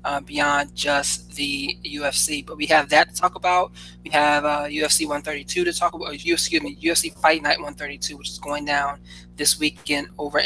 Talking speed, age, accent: 195 wpm, 20-39, American